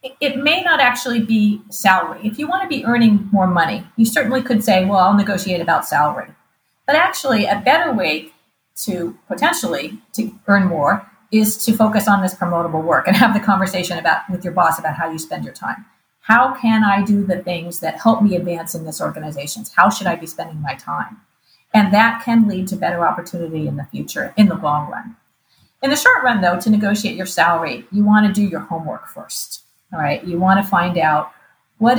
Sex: female